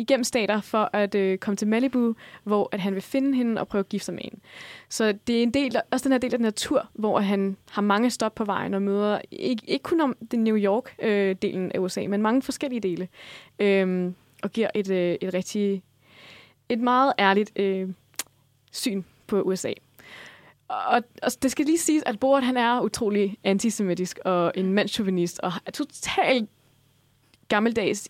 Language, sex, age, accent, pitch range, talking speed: Danish, female, 20-39, native, 185-230 Hz, 190 wpm